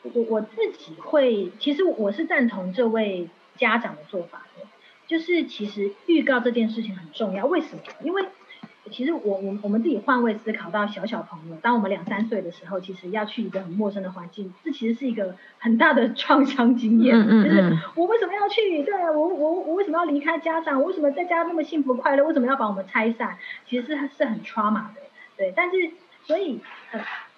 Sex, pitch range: female, 205-285 Hz